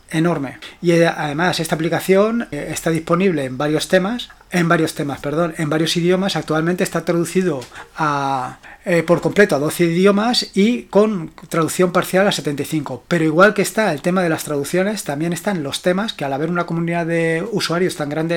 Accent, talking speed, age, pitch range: Spanish, 180 wpm, 30-49, 155-185 Hz